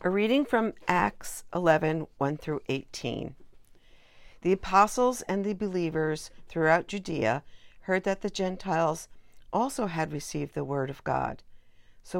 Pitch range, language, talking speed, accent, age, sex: 145-195 Hz, English, 135 wpm, American, 50-69, female